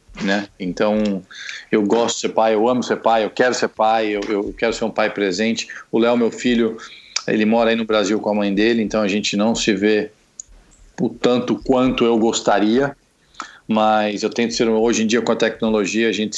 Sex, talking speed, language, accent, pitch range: male, 215 wpm, Portuguese, Brazilian, 105-120 Hz